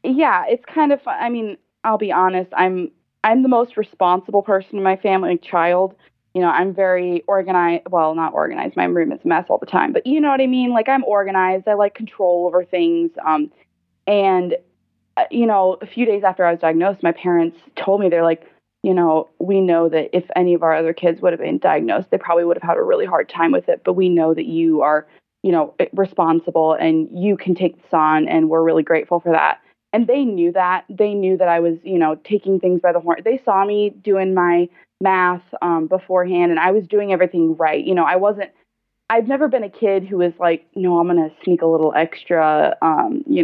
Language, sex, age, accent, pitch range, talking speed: English, female, 20-39, American, 165-205 Hz, 230 wpm